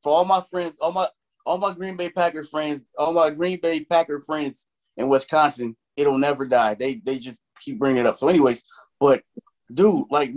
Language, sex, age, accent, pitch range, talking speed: English, male, 20-39, American, 115-155 Hz, 205 wpm